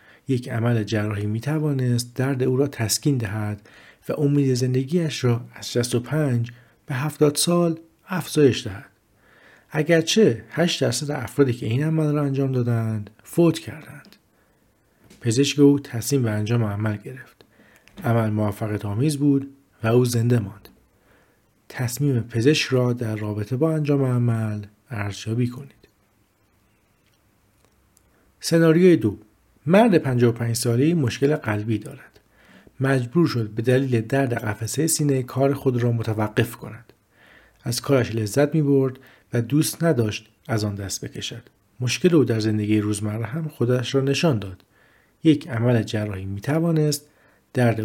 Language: Persian